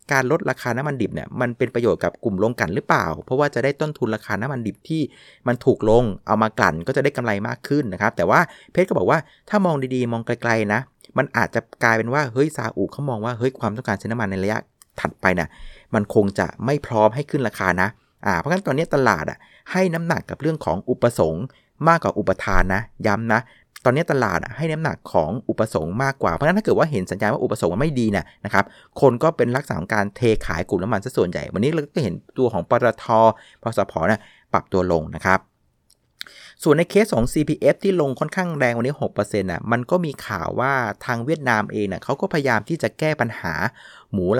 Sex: male